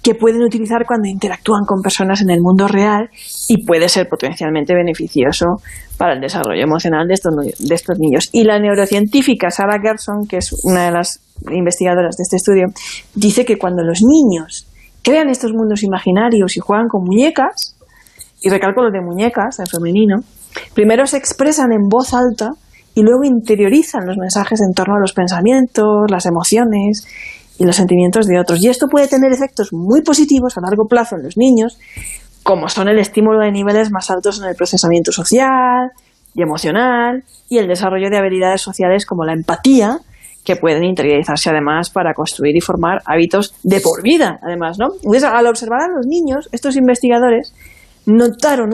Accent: Spanish